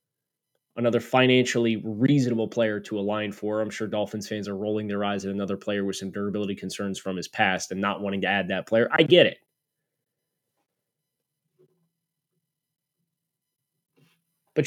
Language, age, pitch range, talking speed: English, 20-39, 115-155 Hz, 145 wpm